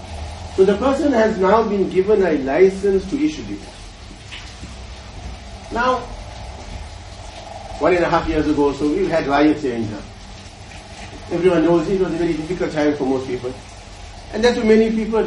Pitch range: 130-215 Hz